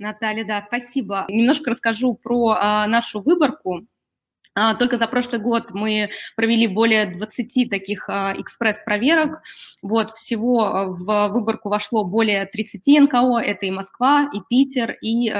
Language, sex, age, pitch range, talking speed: Russian, female, 20-39, 205-235 Hz, 135 wpm